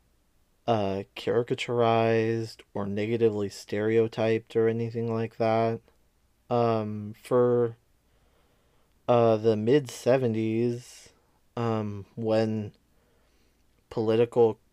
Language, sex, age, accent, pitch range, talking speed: English, male, 20-39, American, 110-125 Hz, 70 wpm